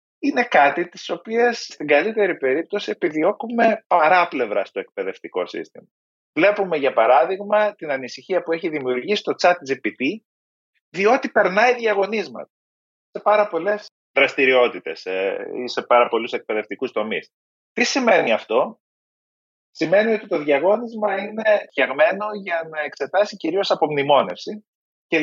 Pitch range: 140-210 Hz